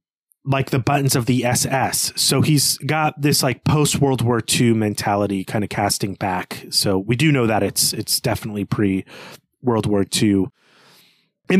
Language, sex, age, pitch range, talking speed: English, male, 30-49, 105-140 Hz, 170 wpm